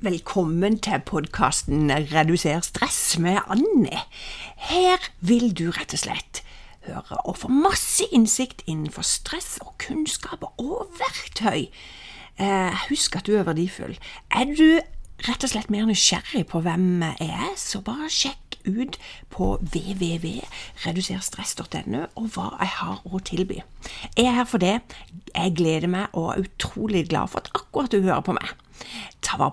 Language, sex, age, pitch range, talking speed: English, female, 50-69, 135-220 Hz, 150 wpm